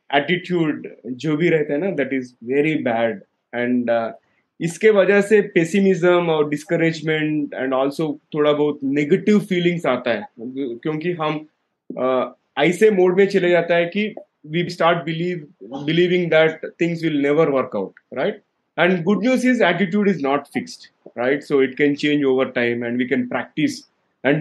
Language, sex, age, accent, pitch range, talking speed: Hindi, male, 20-39, native, 130-170 Hz, 155 wpm